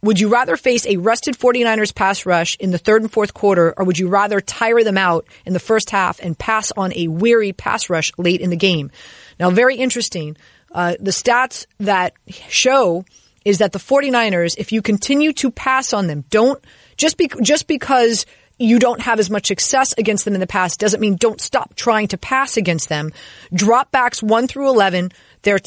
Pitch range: 185-235 Hz